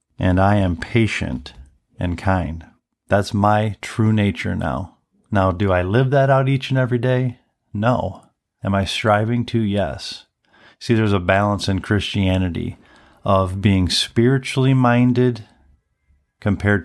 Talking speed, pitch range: 135 wpm, 95-115 Hz